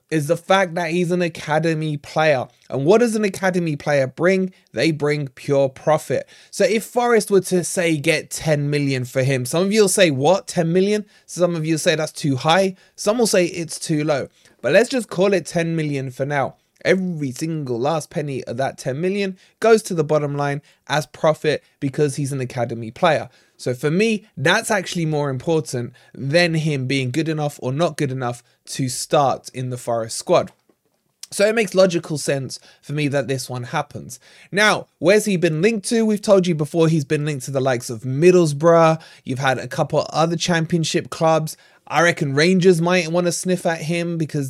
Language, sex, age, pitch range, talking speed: English, male, 20-39, 140-180 Hz, 200 wpm